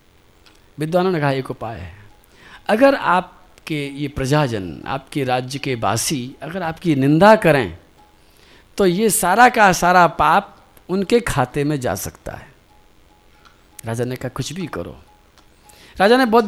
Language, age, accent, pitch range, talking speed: Hindi, 50-69, native, 155-220 Hz, 140 wpm